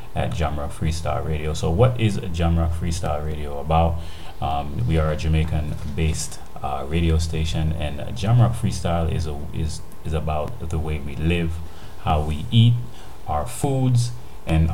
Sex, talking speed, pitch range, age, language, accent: male, 160 wpm, 75-85 Hz, 30-49, English, American